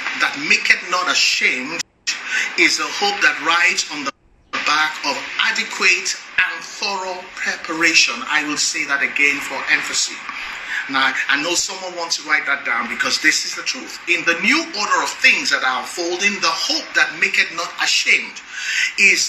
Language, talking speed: English, 175 wpm